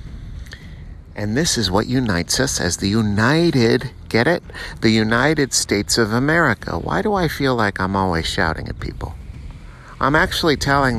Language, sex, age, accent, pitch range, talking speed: English, male, 50-69, American, 85-130 Hz, 160 wpm